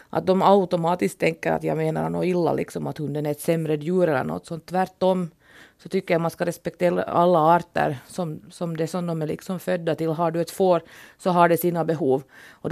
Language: Finnish